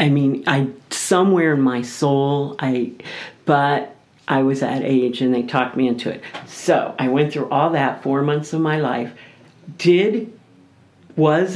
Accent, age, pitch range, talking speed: American, 50-69, 135-175 Hz, 165 wpm